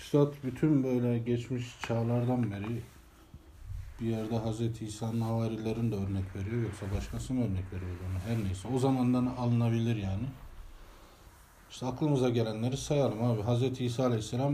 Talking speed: 135 wpm